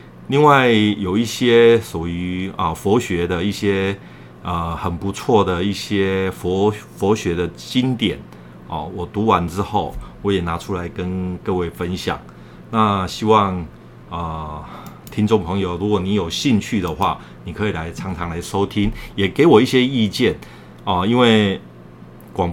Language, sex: Chinese, male